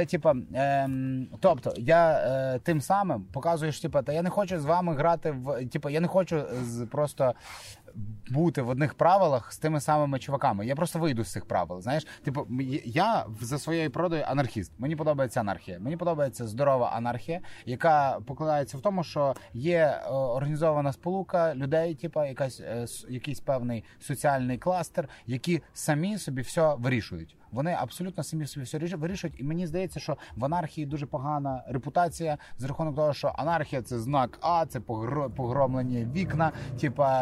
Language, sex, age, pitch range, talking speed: Ukrainian, male, 30-49, 125-165 Hz, 165 wpm